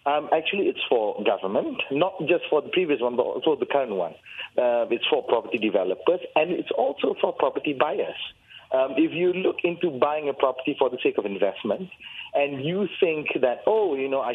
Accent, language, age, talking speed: Malaysian, English, 40-59, 200 wpm